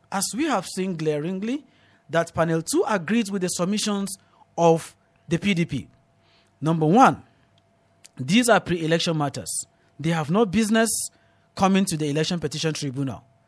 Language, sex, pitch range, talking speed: English, male, 150-220 Hz, 140 wpm